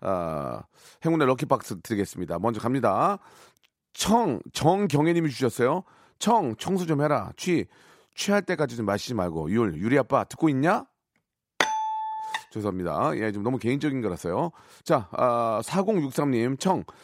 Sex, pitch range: male, 115-175 Hz